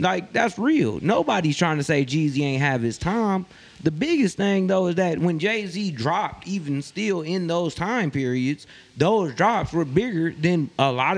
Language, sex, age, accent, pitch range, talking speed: English, male, 20-39, American, 145-220 Hz, 180 wpm